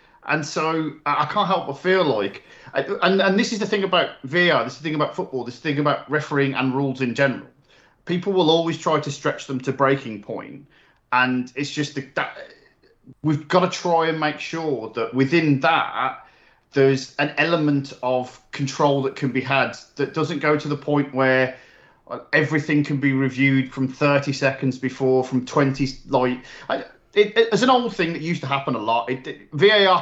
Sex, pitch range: male, 130-160 Hz